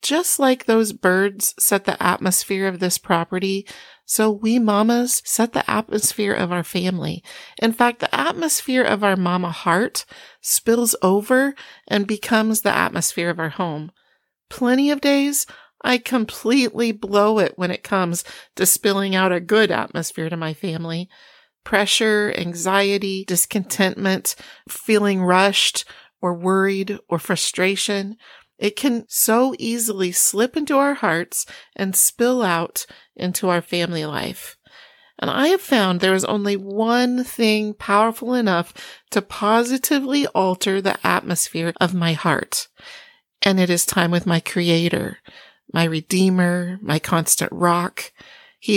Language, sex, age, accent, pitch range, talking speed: English, female, 40-59, American, 180-230 Hz, 140 wpm